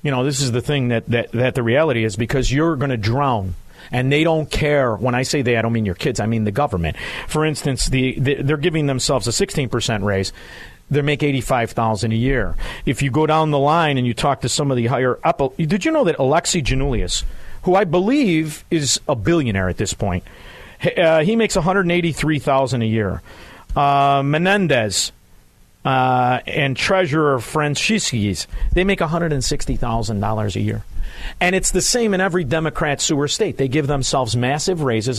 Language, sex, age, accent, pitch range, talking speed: English, male, 50-69, American, 115-160 Hz, 190 wpm